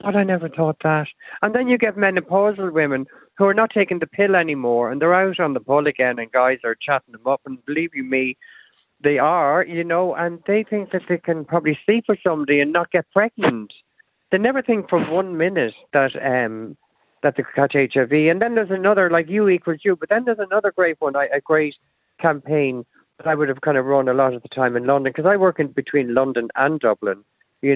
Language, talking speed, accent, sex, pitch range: English, 230 wpm, Irish, male, 130-175 Hz